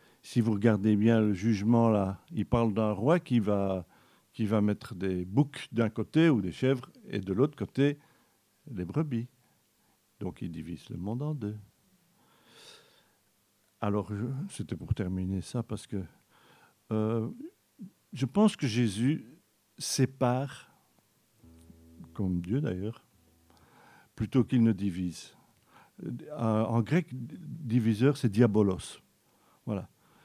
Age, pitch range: 50-69, 105-130 Hz